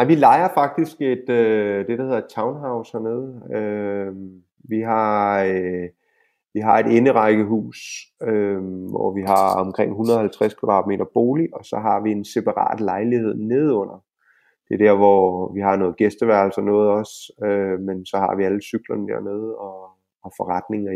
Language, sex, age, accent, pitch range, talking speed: Danish, male, 30-49, native, 95-115 Hz, 140 wpm